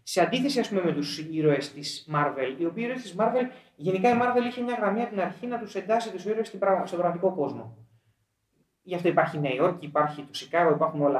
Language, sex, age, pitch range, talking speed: Greek, male, 30-49, 140-210 Hz, 220 wpm